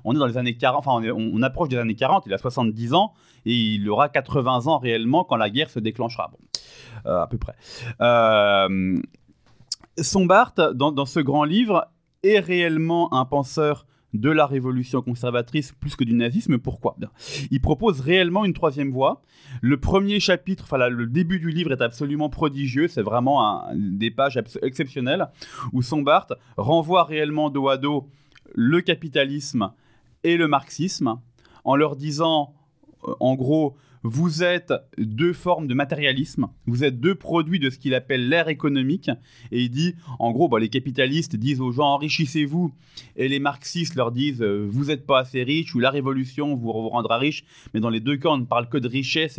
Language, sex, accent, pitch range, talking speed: French, male, French, 125-160 Hz, 180 wpm